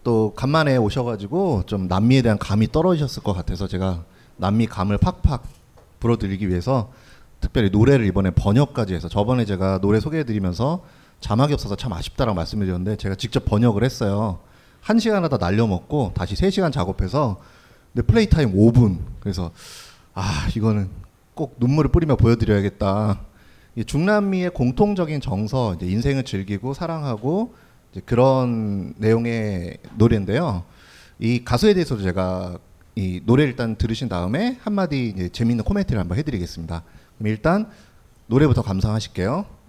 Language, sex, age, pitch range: Korean, male, 30-49, 95-130 Hz